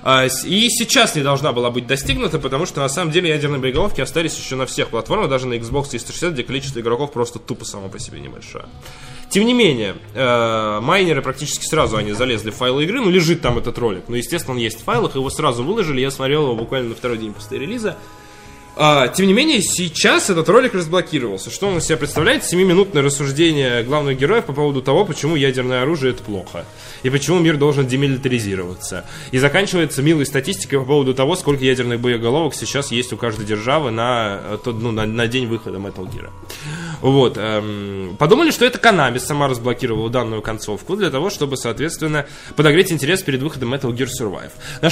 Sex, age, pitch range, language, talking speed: male, 20-39, 120-155 Hz, Russian, 190 wpm